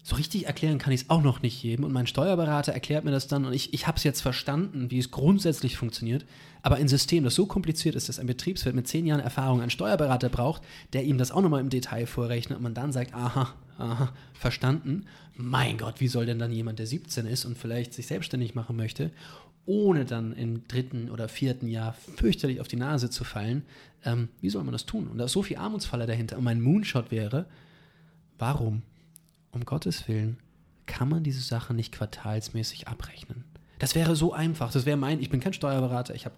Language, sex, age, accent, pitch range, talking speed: German, male, 30-49, German, 120-150 Hz, 215 wpm